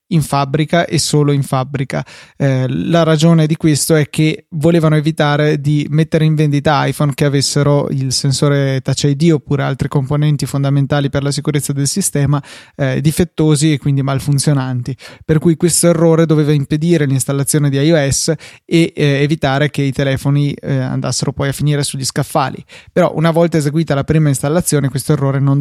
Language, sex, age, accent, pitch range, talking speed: Italian, male, 20-39, native, 135-155 Hz, 170 wpm